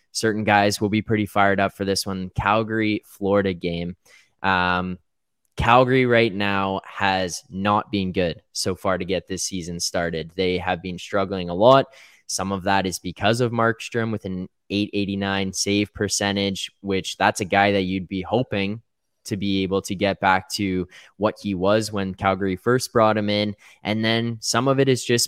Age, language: 10-29, English